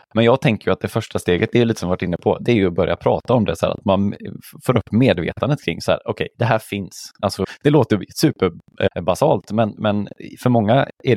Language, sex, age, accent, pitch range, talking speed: Swedish, male, 20-39, native, 90-110 Hz, 255 wpm